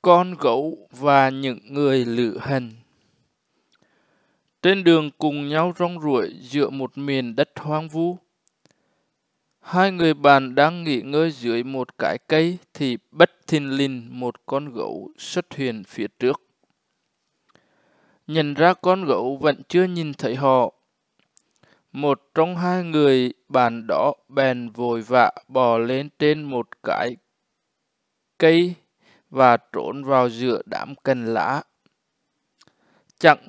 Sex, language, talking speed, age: male, Vietnamese, 130 wpm, 20-39